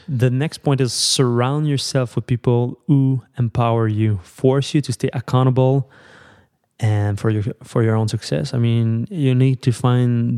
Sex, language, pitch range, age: male, English, 110-125 Hz, 20-39